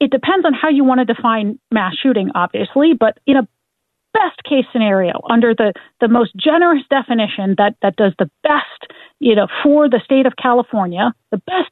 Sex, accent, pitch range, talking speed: female, American, 205-270 Hz, 190 wpm